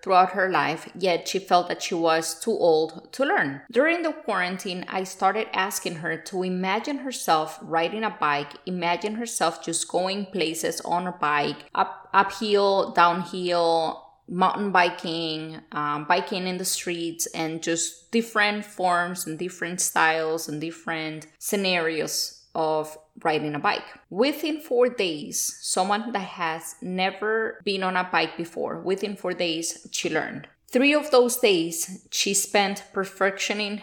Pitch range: 165-205 Hz